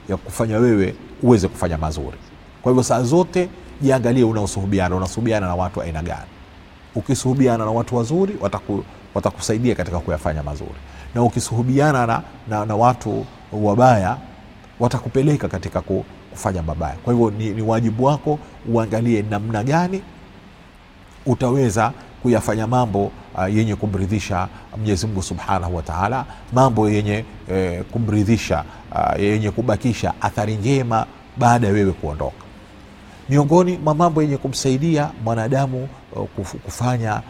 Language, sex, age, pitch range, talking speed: Swahili, male, 40-59, 95-130 Hz, 120 wpm